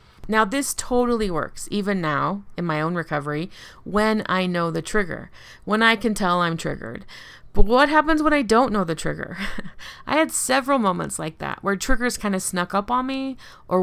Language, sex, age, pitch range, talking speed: English, female, 30-49, 165-225 Hz, 195 wpm